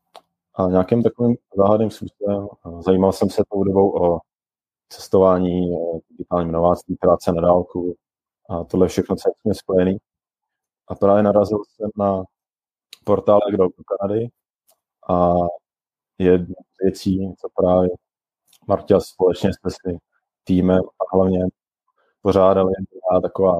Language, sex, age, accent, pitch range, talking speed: Czech, male, 30-49, native, 85-95 Hz, 120 wpm